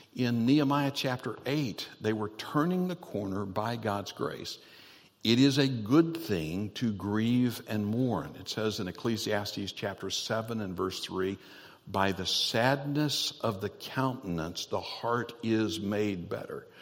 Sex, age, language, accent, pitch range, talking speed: male, 60-79, English, American, 100-140 Hz, 145 wpm